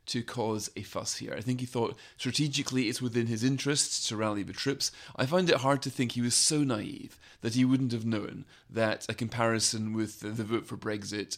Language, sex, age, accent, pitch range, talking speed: English, male, 30-49, British, 110-130 Hz, 220 wpm